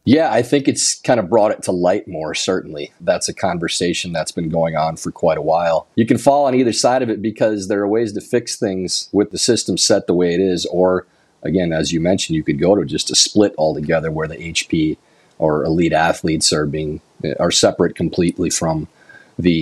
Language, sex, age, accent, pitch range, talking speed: English, male, 40-59, American, 85-110 Hz, 220 wpm